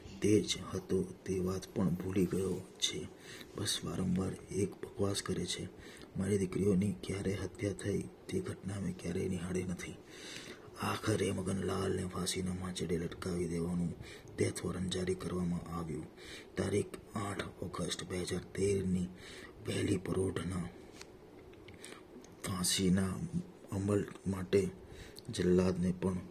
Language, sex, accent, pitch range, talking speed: Gujarati, male, native, 90-100 Hz, 50 wpm